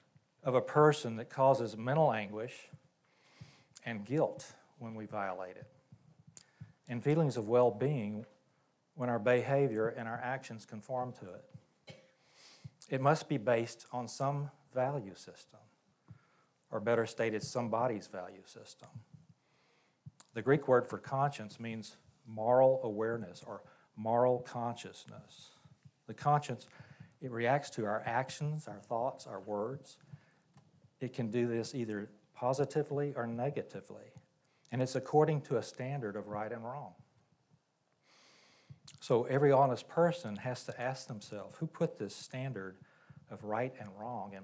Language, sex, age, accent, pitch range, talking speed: English, male, 40-59, American, 115-145 Hz, 130 wpm